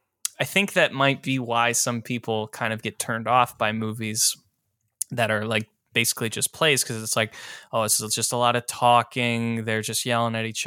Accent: American